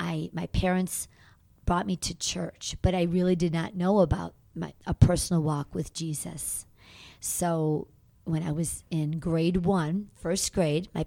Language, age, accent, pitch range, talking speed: English, 40-59, American, 155-180 Hz, 165 wpm